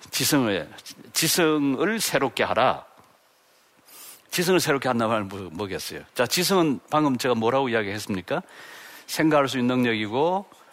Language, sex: Korean, male